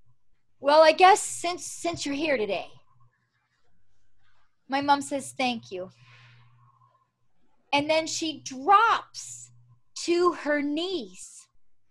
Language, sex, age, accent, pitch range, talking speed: English, female, 30-49, American, 225-350 Hz, 100 wpm